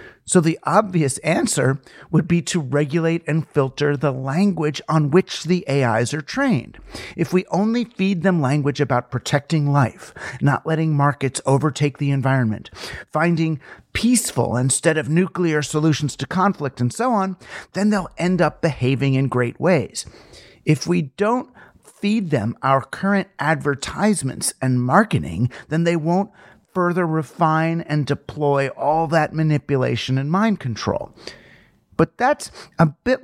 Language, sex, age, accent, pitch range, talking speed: English, male, 50-69, American, 140-185 Hz, 145 wpm